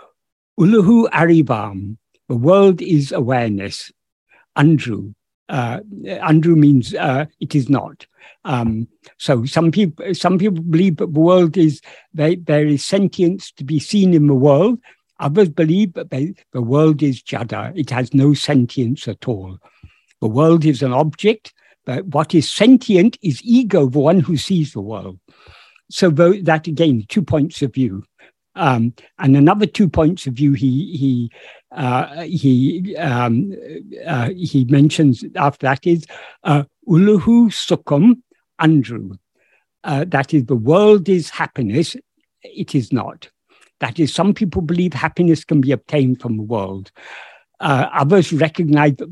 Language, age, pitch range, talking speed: English, 60-79, 130-175 Hz, 150 wpm